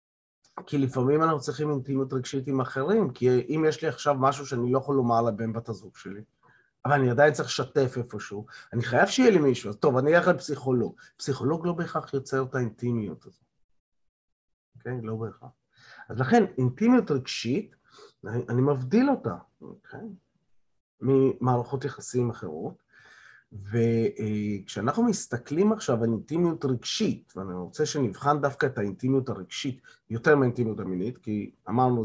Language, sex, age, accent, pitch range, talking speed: Hebrew, male, 30-49, native, 115-145 Hz, 150 wpm